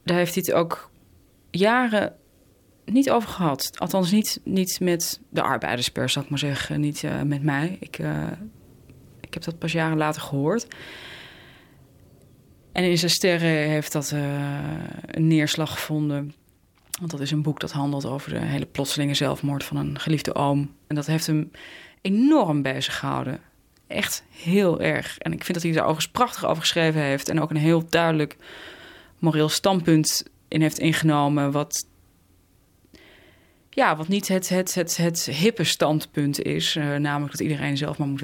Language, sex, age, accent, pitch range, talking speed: Dutch, female, 20-39, Dutch, 140-165 Hz, 170 wpm